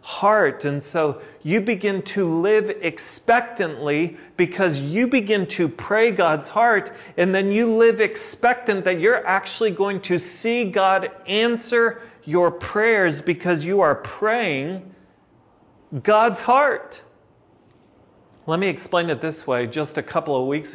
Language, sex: English, male